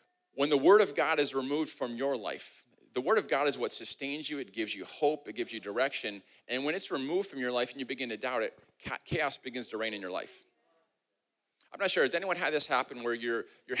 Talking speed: 250 wpm